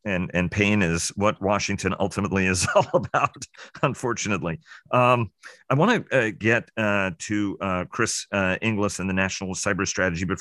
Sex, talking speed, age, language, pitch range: male, 165 wpm, 40-59, English, 90-110 Hz